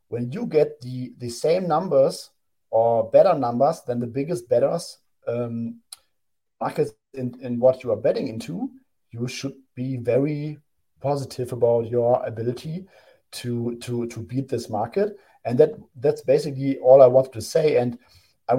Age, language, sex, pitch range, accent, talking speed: 40-59, English, male, 120-135 Hz, German, 155 wpm